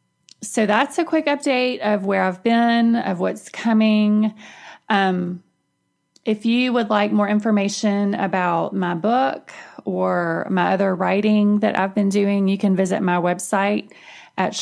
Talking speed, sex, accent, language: 150 wpm, female, American, English